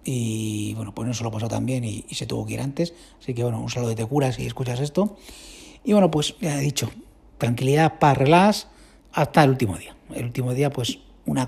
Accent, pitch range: Spanish, 120-175 Hz